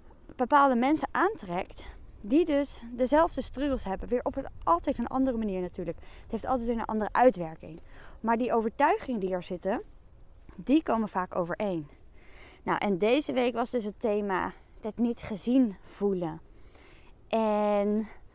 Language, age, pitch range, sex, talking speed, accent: Dutch, 20-39, 195-260 Hz, female, 150 wpm, Dutch